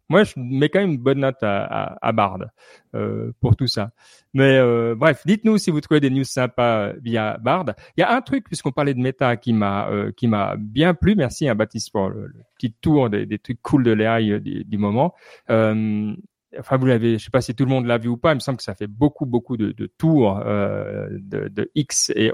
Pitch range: 110-140 Hz